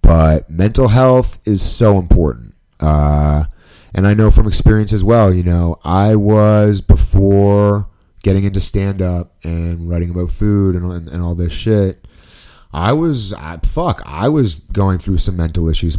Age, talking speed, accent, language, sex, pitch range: 30-49, 160 wpm, American, English, male, 85-110 Hz